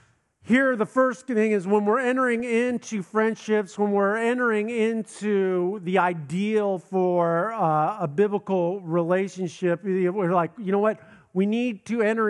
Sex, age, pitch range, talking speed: male, 50-69, 160-195 Hz, 145 wpm